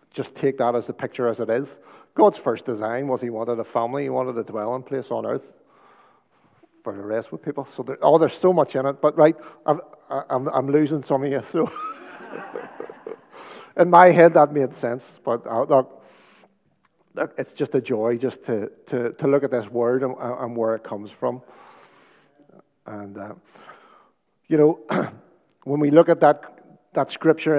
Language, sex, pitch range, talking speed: English, male, 115-145 Hz, 185 wpm